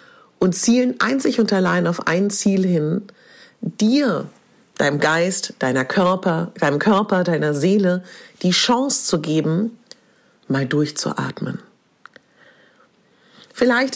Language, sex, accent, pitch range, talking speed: German, female, German, 160-220 Hz, 105 wpm